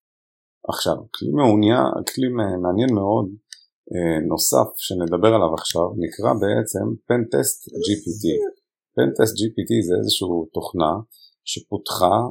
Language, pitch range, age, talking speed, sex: Hebrew, 85-110 Hz, 40-59, 95 wpm, male